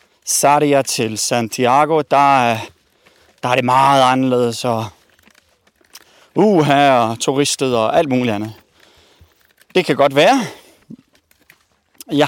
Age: 30-49